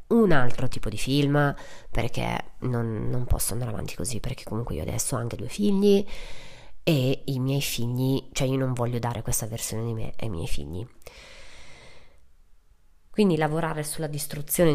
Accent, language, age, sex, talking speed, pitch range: native, Italian, 30-49, female, 165 wpm, 125-145 Hz